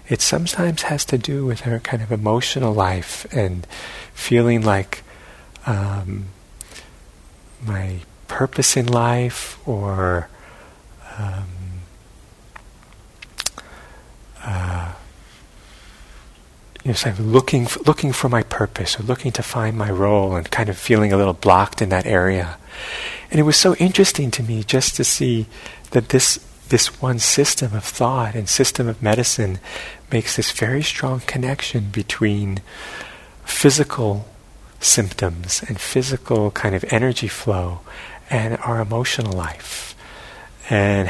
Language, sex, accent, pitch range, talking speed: English, male, American, 100-125 Hz, 130 wpm